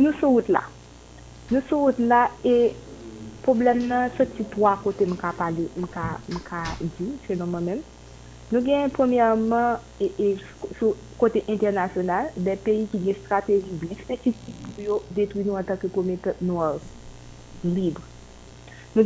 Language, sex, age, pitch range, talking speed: French, female, 30-49, 175-215 Hz, 140 wpm